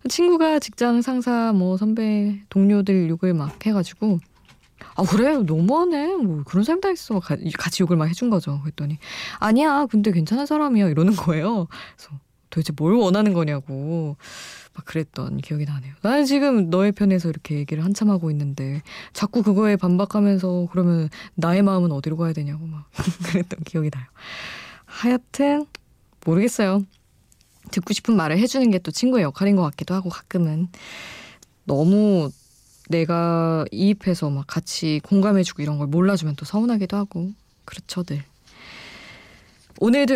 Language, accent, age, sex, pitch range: Korean, native, 20-39, female, 150-210 Hz